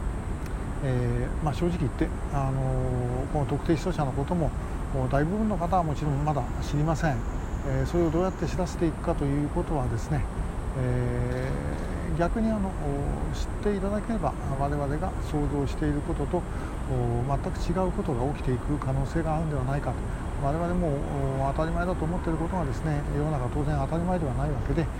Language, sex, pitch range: Japanese, male, 125-155 Hz